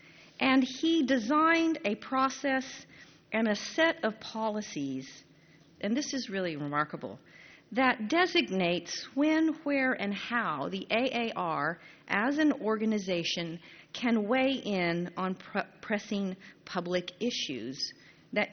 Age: 50-69